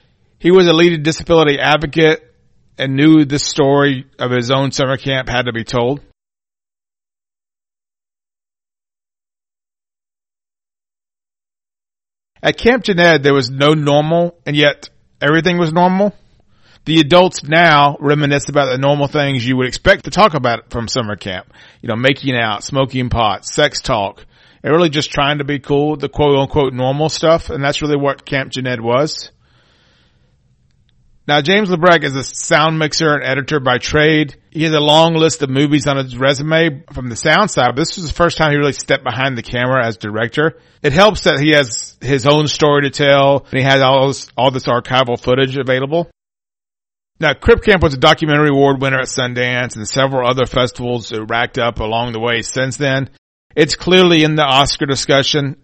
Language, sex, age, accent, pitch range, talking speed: English, male, 40-59, American, 125-155 Hz, 175 wpm